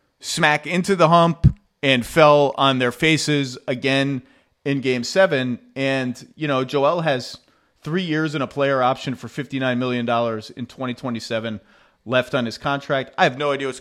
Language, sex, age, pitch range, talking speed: English, male, 30-49, 125-150 Hz, 165 wpm